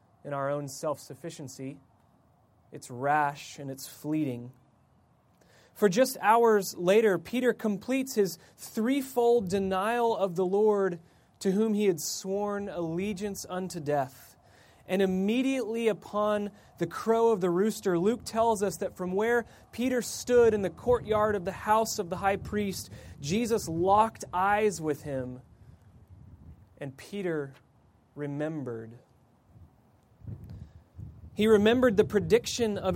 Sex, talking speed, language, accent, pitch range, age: male, 125 wpm, English, American, 125-205 Hz, 30-49